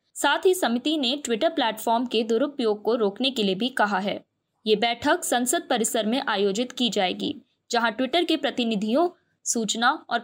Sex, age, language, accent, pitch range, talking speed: female, 20-39, Hindi, native, 225-300 Hz, 170 wpm